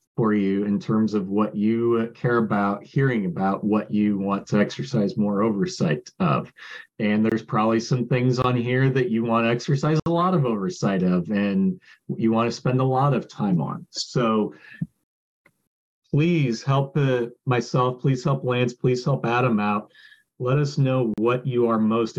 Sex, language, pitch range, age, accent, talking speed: male, English, 105-125 Hz, 40-59, American, 170 wpm